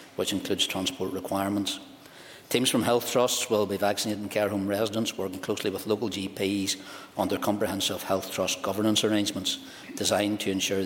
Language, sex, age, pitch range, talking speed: English, male, 60-79, 95-105 Hz, 160 wpm